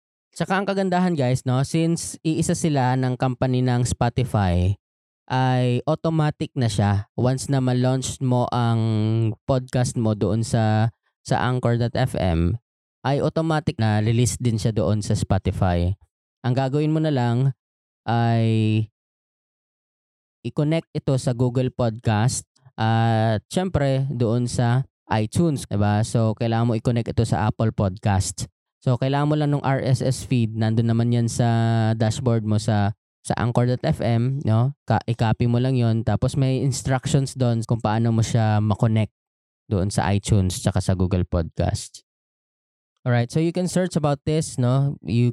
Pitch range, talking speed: 110-135 Hz, 145 wpm